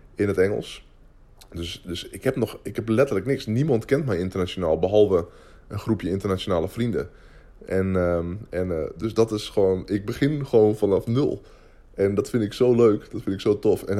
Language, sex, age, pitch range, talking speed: Dutch, male, 20-39, 95-115 Hz, 195 wpm